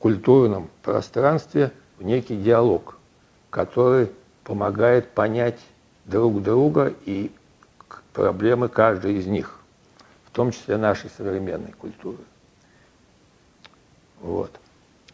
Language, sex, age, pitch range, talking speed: Russian, male, 60-79, 105-120 Hz, 85 wpm